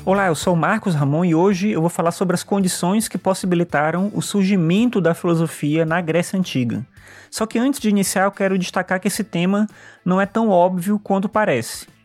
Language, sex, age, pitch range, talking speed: Portuguese, male, 20-39, 155-195 Hz, 200 wpm